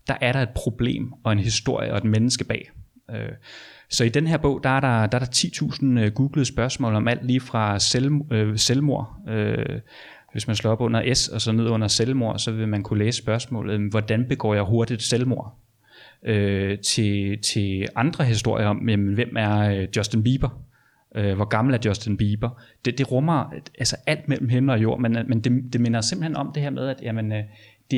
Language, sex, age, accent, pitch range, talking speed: Danish, male, 30-49, native, 110-130 Hz, 195 wpm